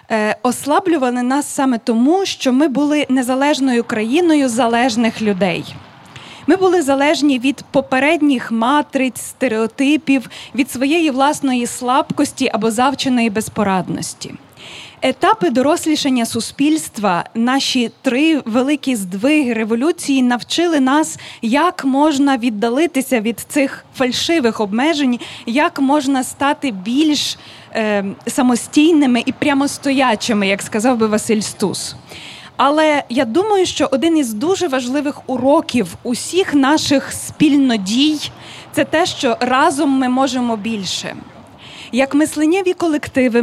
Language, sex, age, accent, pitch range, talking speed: Ukrainian, female, 20-39, native, 235-295 Hz, 110 wpm